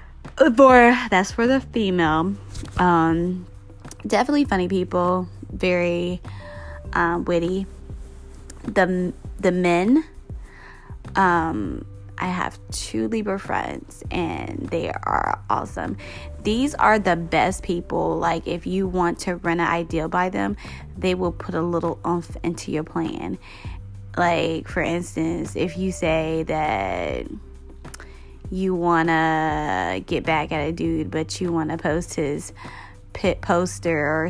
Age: 20-39